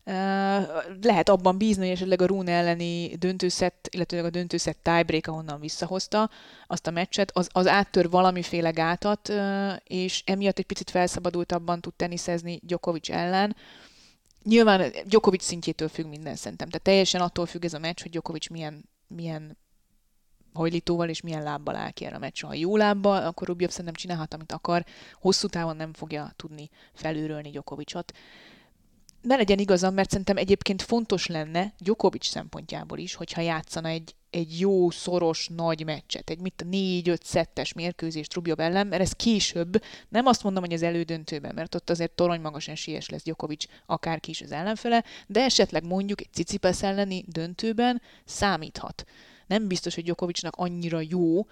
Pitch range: 160-190 Hz